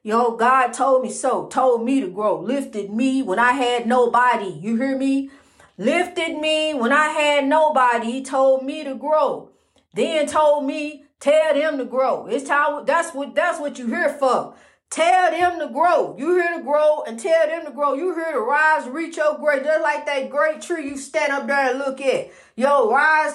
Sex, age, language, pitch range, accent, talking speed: female, 40-59, English, 210-290 Hz, American, 205 wpm